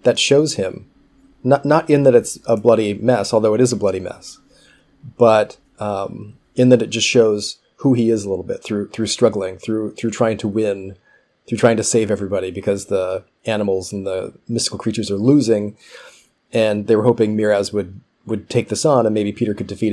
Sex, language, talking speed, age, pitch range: male, English, 200 wpm, 30-49, 105-125 Hz